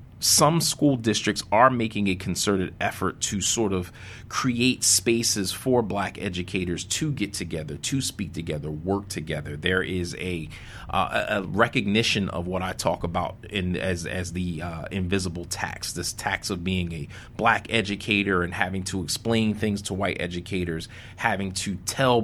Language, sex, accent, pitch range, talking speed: English, male, American, 90-110 Hz, 160 wpm